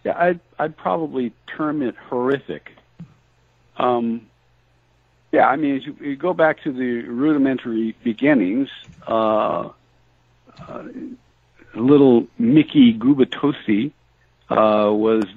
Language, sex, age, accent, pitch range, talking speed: English, male, 60-79, American, 100-125 Hz, 100 wpm